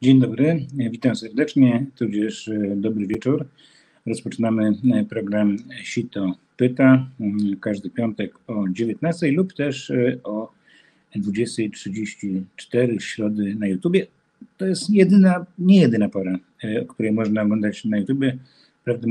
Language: Polish